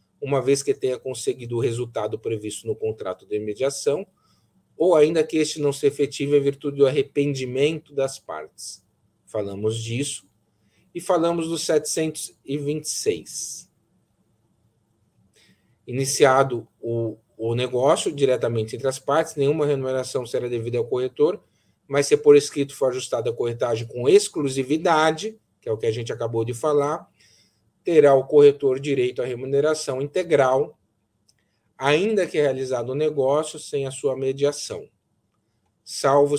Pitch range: 120-155 Hz